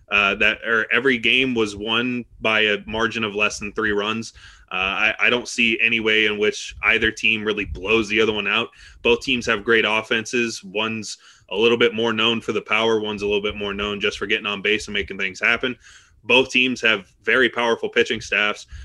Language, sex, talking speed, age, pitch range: English, male, 215 wpm, 20-39, 105-115 Hz